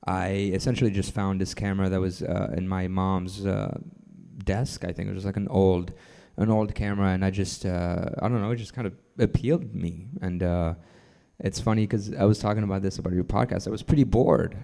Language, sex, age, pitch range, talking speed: English, male, 20-39, 90-100 Hz, 220 wpm